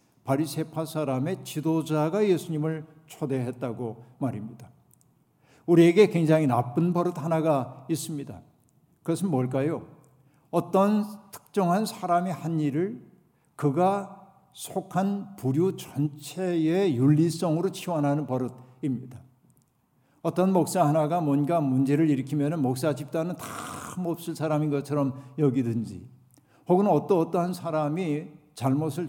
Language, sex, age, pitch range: Korean, male, 60-79, 135-170 Hz